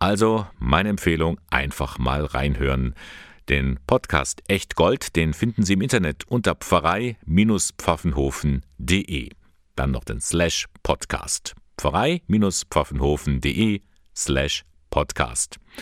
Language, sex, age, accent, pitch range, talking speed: German, male, 50-69, German, 70-95 Hz, 85 wpm